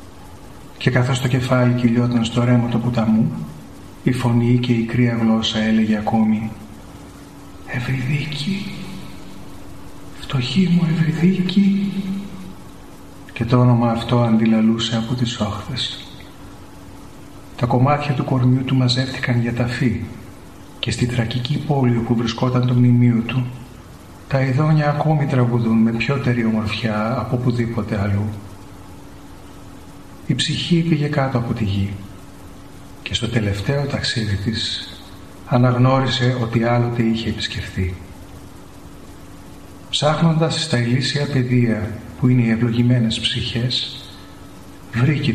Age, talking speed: 40-59, 110 wpm